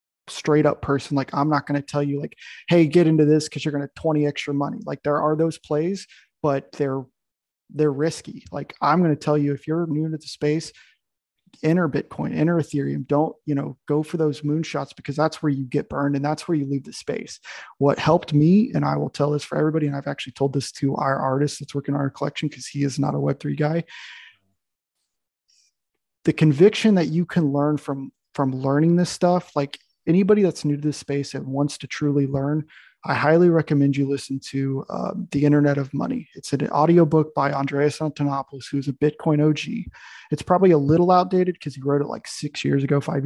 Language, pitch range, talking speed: English, 140-155 Hz, 215 wpm